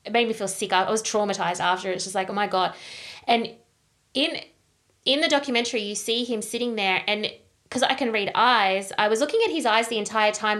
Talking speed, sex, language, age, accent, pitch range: 230 wpm, female, English, 20-39, Australian, 195-230 Hz